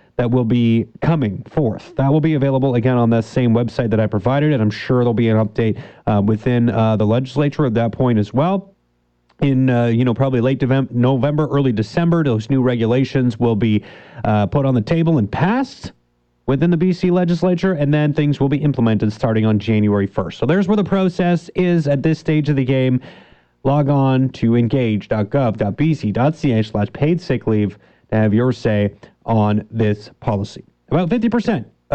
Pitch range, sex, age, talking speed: 110-150 Hz, male, 30-49, 180 wpm